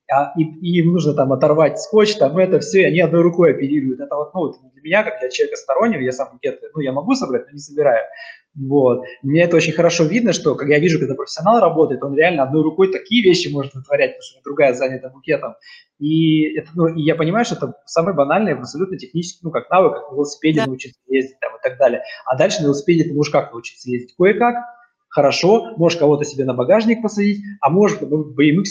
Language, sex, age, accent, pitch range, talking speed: Russian, male, 20-39, native, 140-175 Hz, 220 wpm